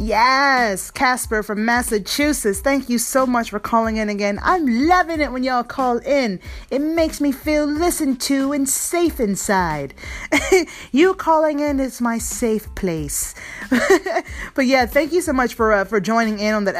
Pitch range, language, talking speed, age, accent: 190-265 Hz, English, 170 wpm, 30-49, American